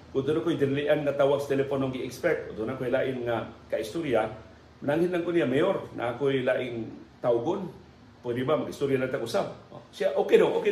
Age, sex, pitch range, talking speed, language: 40-59, male, 115-150 Hz, 200 wpm, Filipino